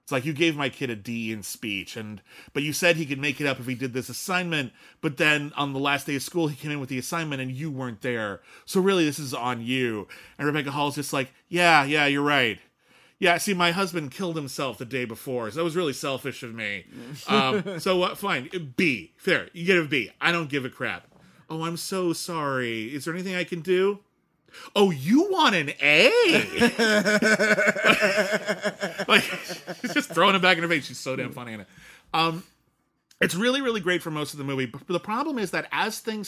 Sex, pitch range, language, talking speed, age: male, 130-180 Hz, English, 225 wpm, 30-49